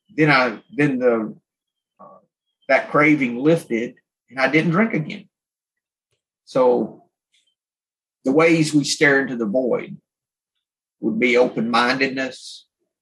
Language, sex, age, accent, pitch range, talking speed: English, male, 40-59, American, 115-155 Hz, 110 wpm